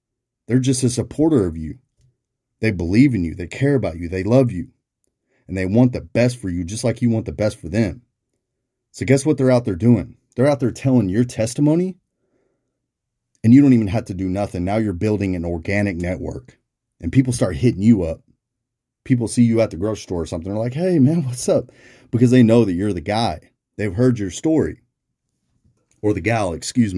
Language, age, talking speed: English, 30-49, 210 wpm